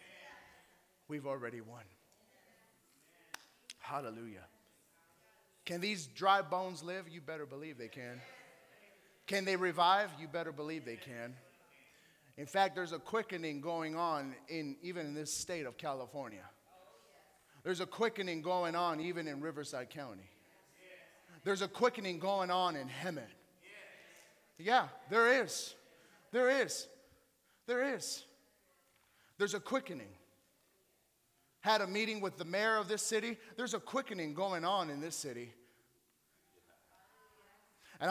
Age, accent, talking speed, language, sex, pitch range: 30-49, American, 125 wpm, English, male, 150-205 Hz